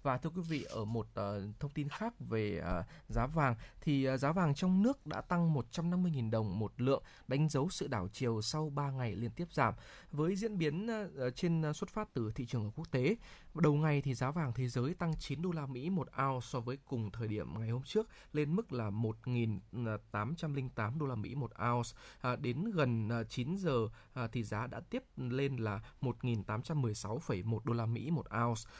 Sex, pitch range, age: male, 115-155 Hz, 20-39